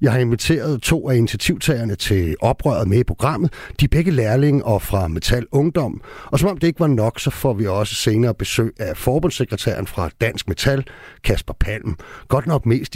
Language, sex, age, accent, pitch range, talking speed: Danish, male, 60-79, native, 100-140 Hz, 195 wpm